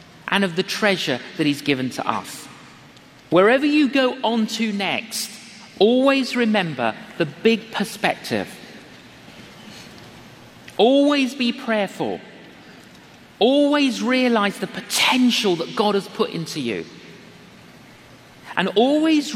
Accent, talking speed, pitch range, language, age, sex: British, 110 wpm, 190-245 Hz, English, 40-59, male